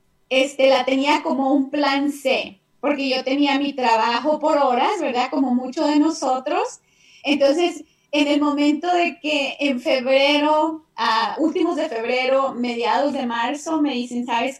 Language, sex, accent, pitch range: English, female, Mexican, 255-305 Hz